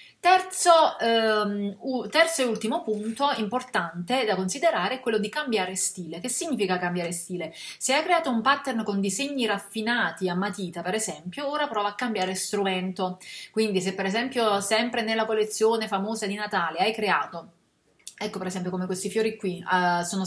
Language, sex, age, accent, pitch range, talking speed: Italian, female, 30-49, native, 185-230 Hz, 160 wpm